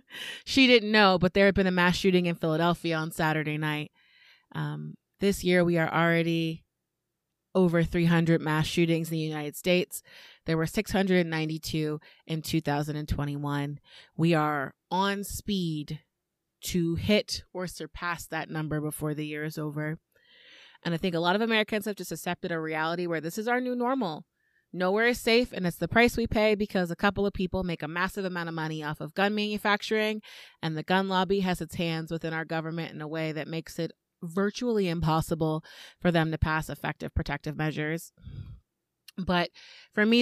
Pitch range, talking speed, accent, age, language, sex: 155-200 Hz, 180 wpm, American, 20-39, English, female